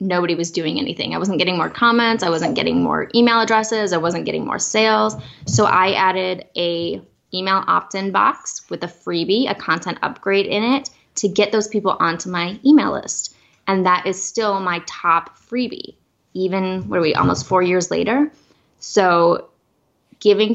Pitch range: 180-225 Hz